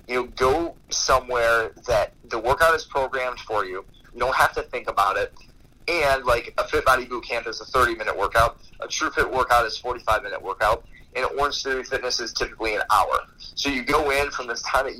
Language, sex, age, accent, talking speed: English, male, 30-49, American, 210 wpm